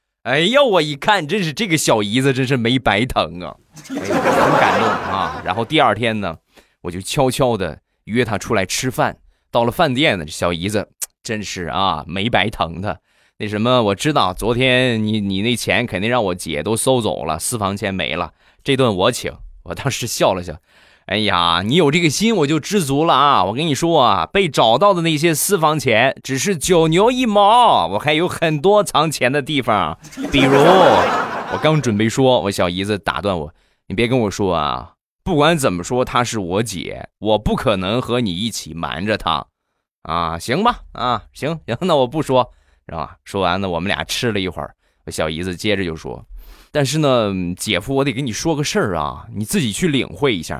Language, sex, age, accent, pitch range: Chinese, male, 20-39, native, 95-150 Hz